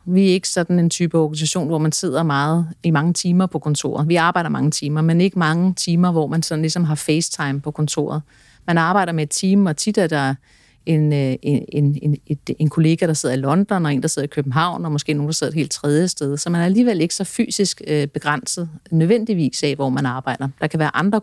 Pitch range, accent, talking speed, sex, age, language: 150-180 Hz, native, 235 wpm, female, 30-49, Danish